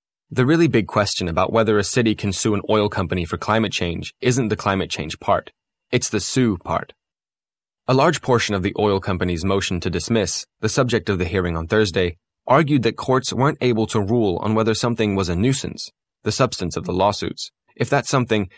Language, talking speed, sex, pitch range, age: English, 205 wpm, male, 95-120 Hz, 20-39